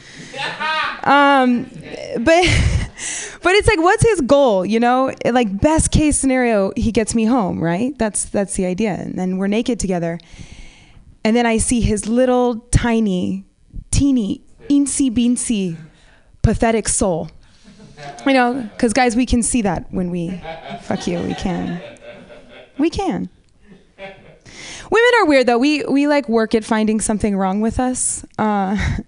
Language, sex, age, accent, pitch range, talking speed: English, female, 20-39, American, 205-280 Hz, 145 wpm